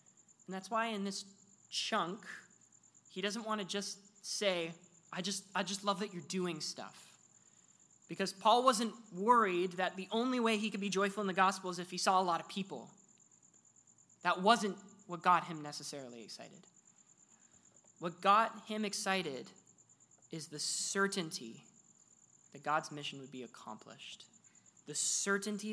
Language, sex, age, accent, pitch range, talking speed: English, male, 20-39, American, 160-195 Hz, 155 wpm